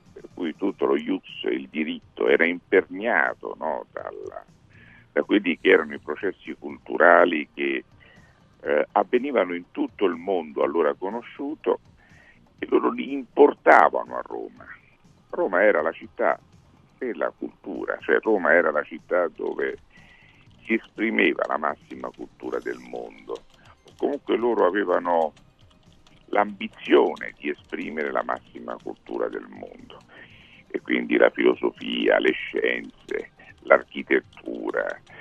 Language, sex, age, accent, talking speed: Italian, male, 50-69, native, 110 wpm